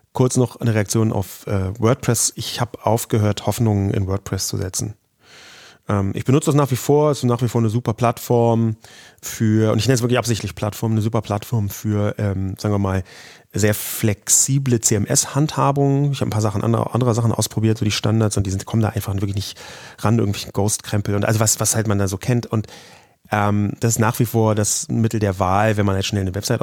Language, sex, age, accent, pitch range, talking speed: German, male, 30-49, German, 105-125 Hz, 225 wpm